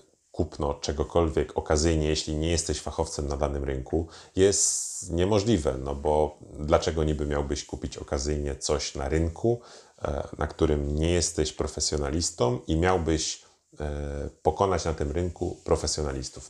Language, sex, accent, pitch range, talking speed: Polish, male, native, 70-85 Hz, 125 wpm